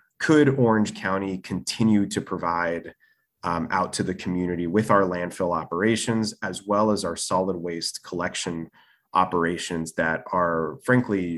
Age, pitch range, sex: 20-39, 90-105 Hz, male